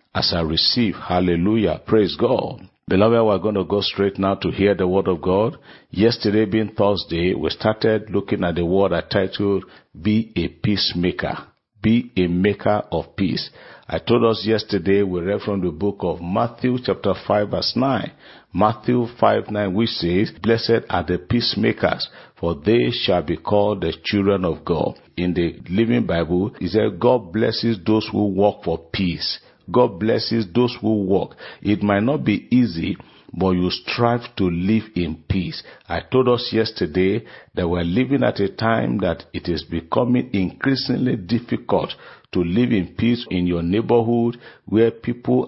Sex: male